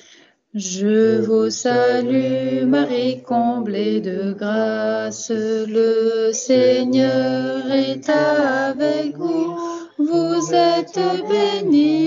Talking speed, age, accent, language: 75 wpm, 30-49, French, French